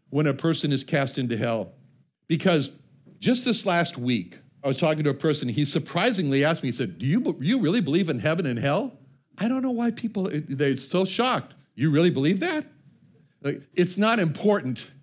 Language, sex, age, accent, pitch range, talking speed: English, male, 60-79, American, 140-190 Hz, 195 wpm